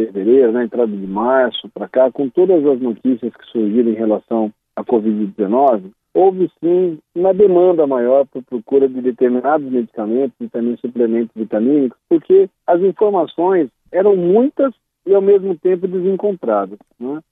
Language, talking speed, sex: Portuguese, 150 wpm, male